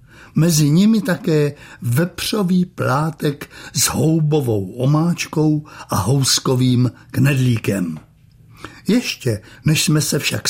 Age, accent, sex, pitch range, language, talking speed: 60-79, native, male, 130-165 Hz, Czech, 90 wpm